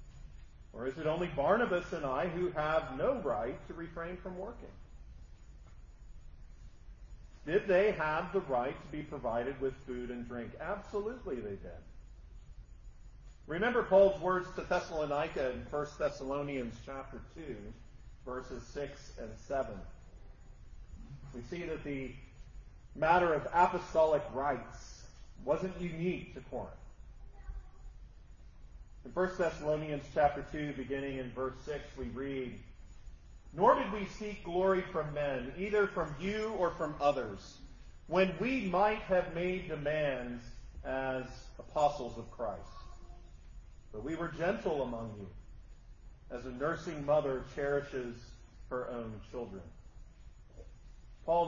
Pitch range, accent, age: 120-180 Hz, American, 40-59